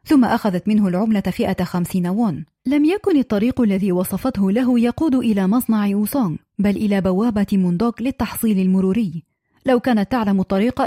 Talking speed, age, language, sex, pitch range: 150 wpm, 30-49, Arabic, female, 190-245 Hz